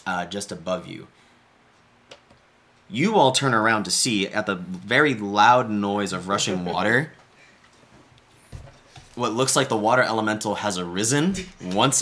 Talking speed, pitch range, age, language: 135 wpm, 100-125 Hz, 20-39, English